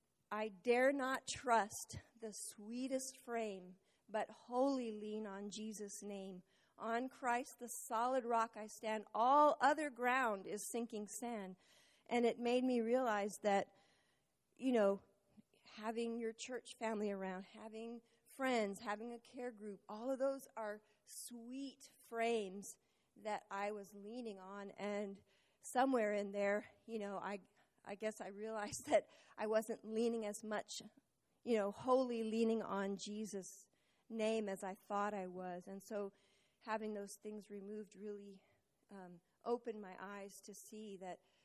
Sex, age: female, 40-59